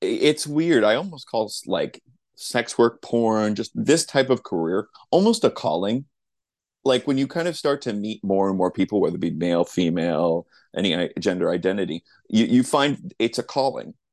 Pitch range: 100-135 Hz